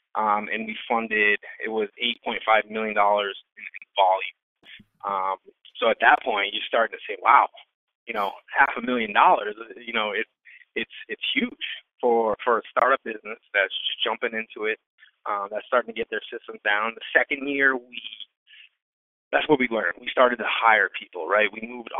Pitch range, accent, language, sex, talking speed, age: 110-130 Hz, American, English, male, 185 wpm, 20-39